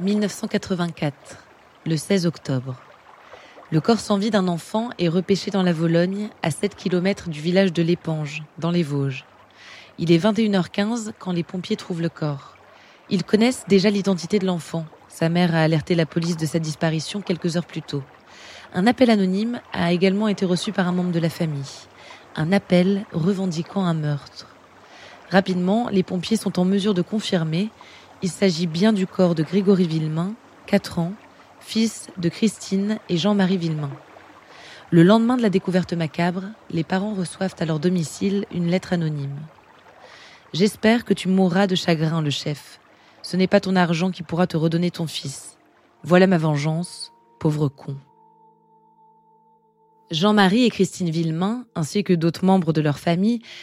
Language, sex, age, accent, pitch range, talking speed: French, female, 20-39, French, 165-200 Hz, 165 wpm